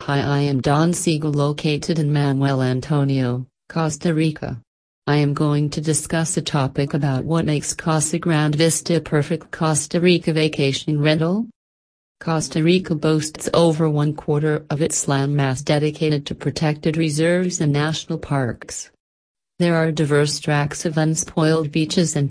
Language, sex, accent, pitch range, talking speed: English, female, American, 140-160 Hz, 145 wpm